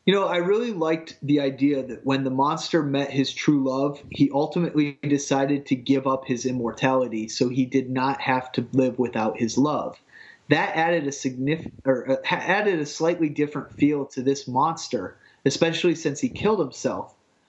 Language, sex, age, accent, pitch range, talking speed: English, male, 30-49, American, 130-155 Hz, 180 wpm